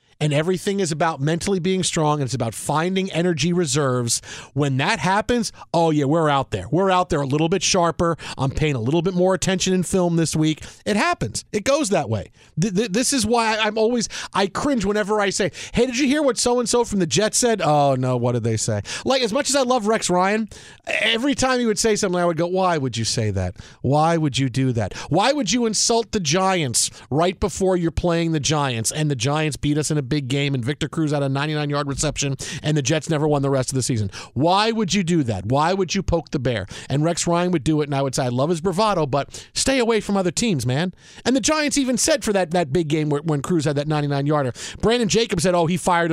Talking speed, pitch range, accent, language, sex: 245 wpm, 145-200 Hz, American, English, male